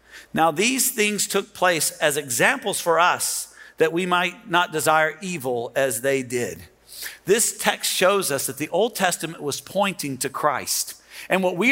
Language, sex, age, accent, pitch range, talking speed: English, male, 50-69, American, 170-225 Hz, 170 wpm